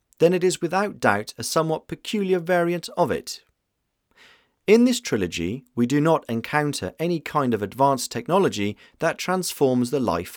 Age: 40-59